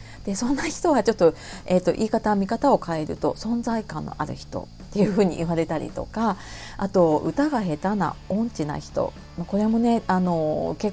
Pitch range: 170-240 Hz